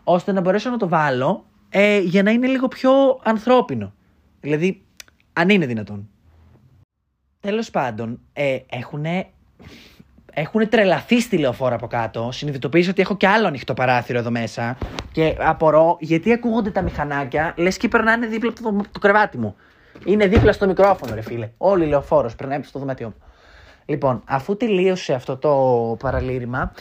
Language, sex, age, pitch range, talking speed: Greek, male, 20-39, 125-180 Hz, 155 wpm